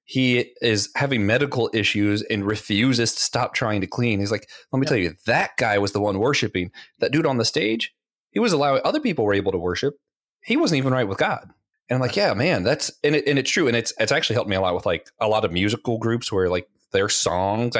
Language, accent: English, American